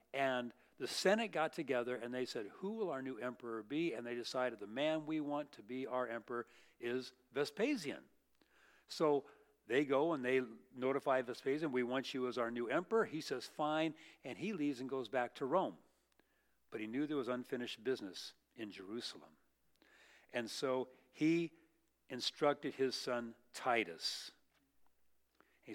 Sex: male